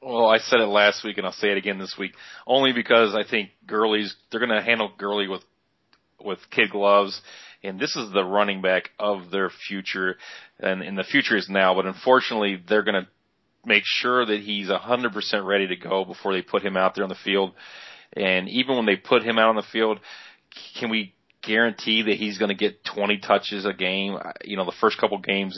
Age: 30-49